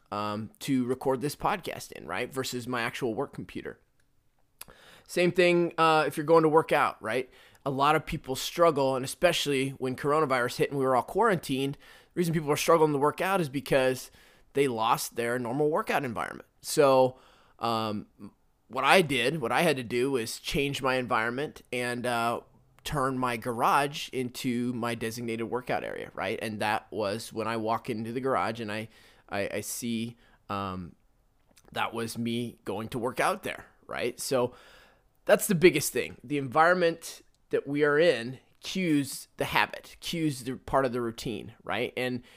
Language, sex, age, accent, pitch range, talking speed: English, male, 20-39, American, 120-150 Hz, 175 wpm